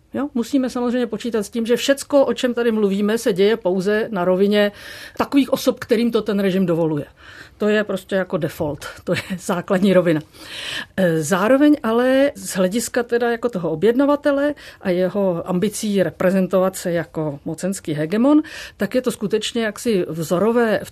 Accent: native